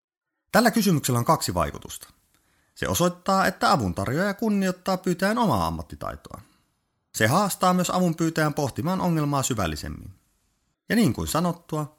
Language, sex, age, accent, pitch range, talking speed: Finnish, male, 30-49, native, 110-175 Hz, 120 wpm